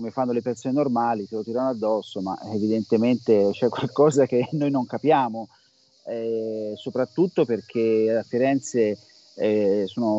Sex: male